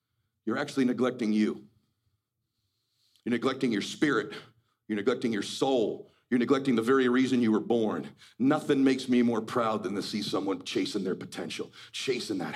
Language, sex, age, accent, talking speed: English, male, 40-59, American, 160 wpm